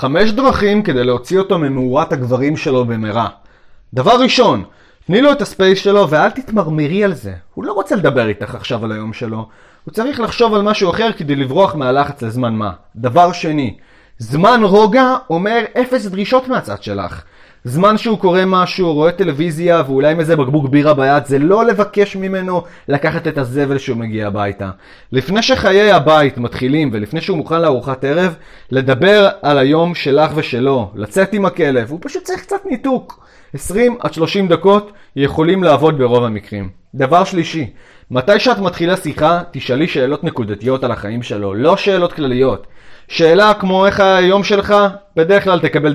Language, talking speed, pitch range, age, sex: Arabic, 160 wpm, 125-195 Hz, 30-49, male